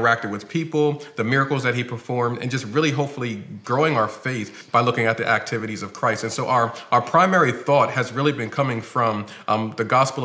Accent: American